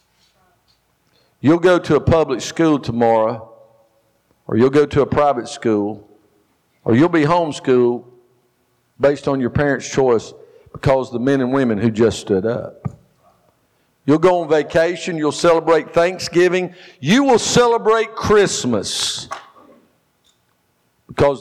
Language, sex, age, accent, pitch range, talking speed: English, male, 50-69, American, 125-165 Hz, 125 wpm